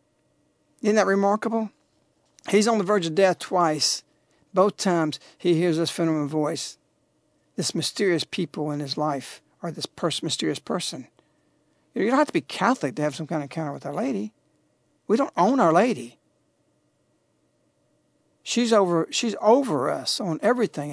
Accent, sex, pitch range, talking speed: American, male, 160-225 Hz, 165 wpm